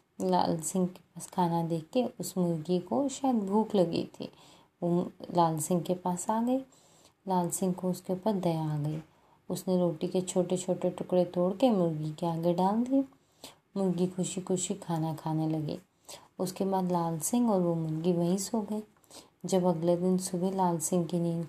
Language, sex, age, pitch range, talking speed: Hindi, female, 20-39, 175-200 Hz, 185 wpm